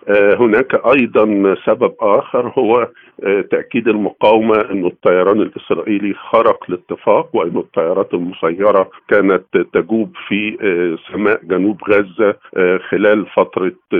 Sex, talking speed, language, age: male, 100 wpm, Arabic, 50-69